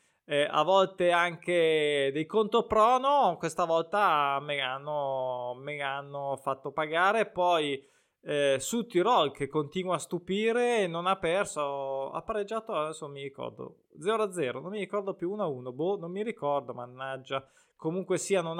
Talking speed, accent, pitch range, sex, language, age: 150 wpm, native, 150-200 Hz, male, Italian, 20-39